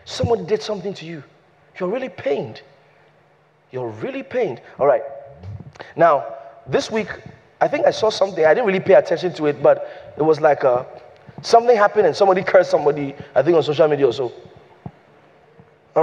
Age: 30-49